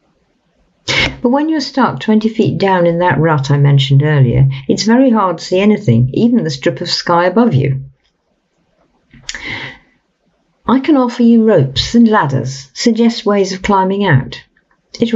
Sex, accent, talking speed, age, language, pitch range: female, British, 155 wpm, 50-69, English, 135-220 Hz